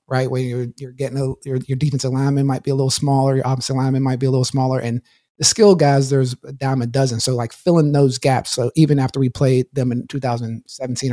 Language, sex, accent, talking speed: English, male, American, 245 wpm